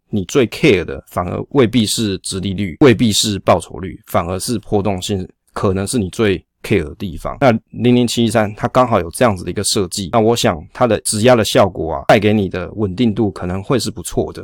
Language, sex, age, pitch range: Chinese, male, 20-39, 95-120 Hz